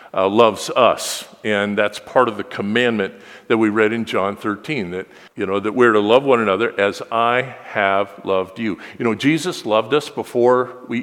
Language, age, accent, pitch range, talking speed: English, 50-69, American, 125-180 Hz, 195 wpm